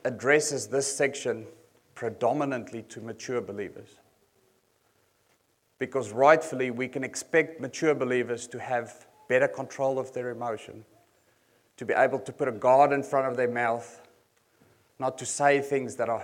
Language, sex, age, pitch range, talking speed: English, male, 30-49, 120-140 Hz, 145 wpm